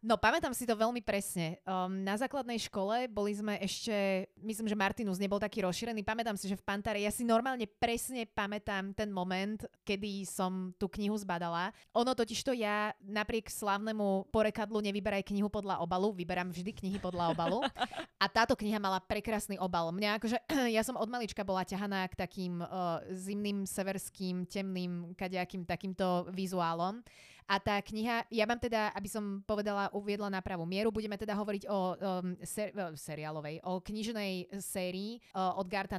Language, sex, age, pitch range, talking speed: Slovak, female, 20-39, 185-215 Hz, 170 wpm